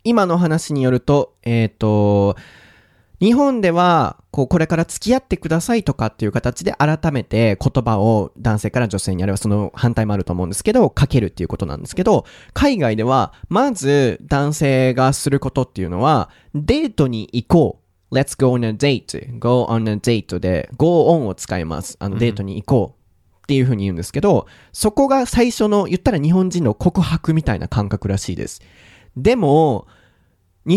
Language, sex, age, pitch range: Japanese, male, 20-39, 105-155 Hz